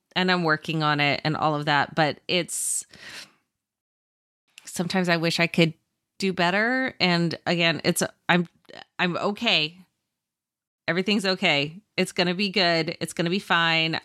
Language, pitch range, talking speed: English, 155-190 Hz, 145 wpm